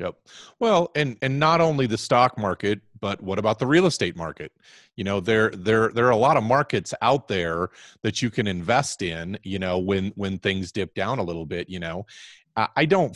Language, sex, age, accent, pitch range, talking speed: English, male, 30-49, American, 95-125 Hz, 215 wpm